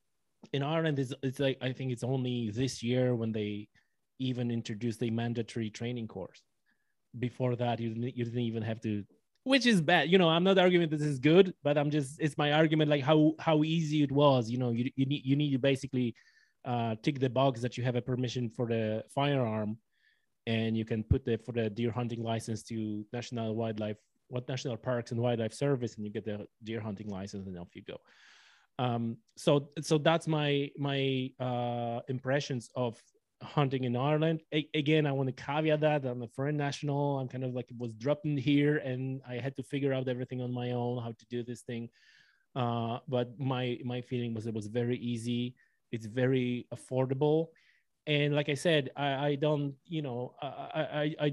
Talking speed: 200 wpm